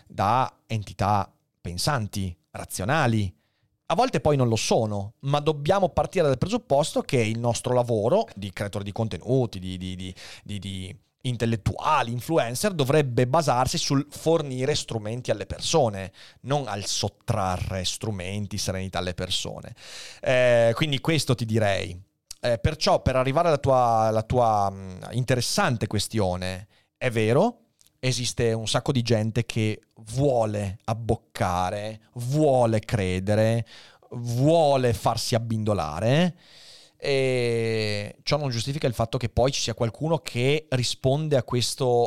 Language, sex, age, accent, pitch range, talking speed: Italian, male, 30-49, native, 105-135 Hz, 125 wpm